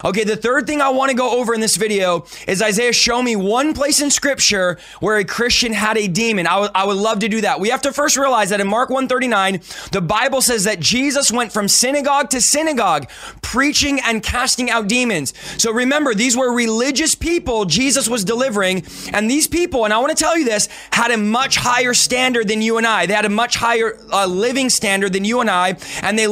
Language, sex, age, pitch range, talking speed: English, male, 20-39, 210-255 Hz, 235 wpm